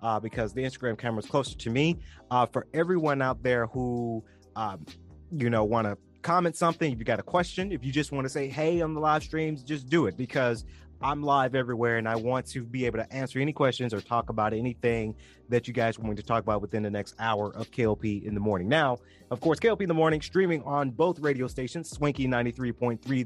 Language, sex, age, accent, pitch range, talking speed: English, male, 30-49, American, 110-145 Hz, 230 wpm